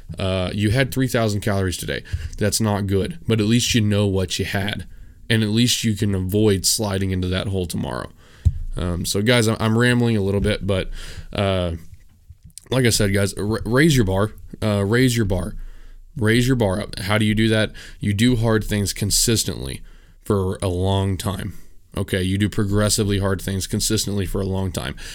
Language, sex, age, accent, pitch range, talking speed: English, male, 20-39, American, 95-110 Hz, 190 wpm